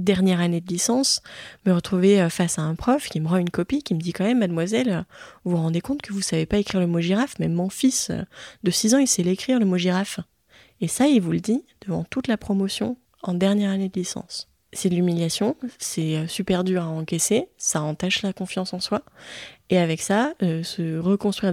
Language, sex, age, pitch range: French, female, 20-39, 180-235 Hz